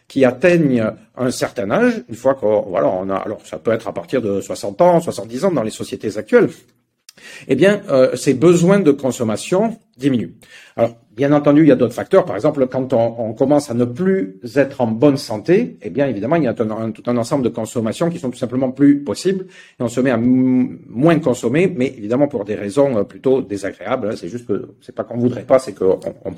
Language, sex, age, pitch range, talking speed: French, male, 40-59, 115-155 Hz, 230 wpm